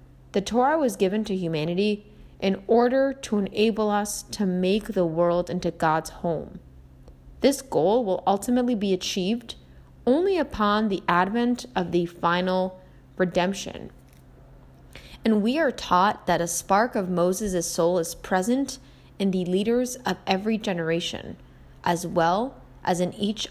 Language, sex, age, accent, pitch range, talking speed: English, female, 20-39, American, 175-220 Hz, 140 wpm